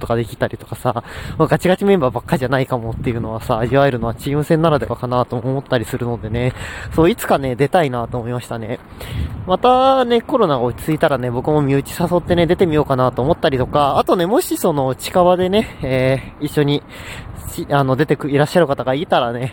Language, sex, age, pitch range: Japanese, male, 20-39, 120-160 Hz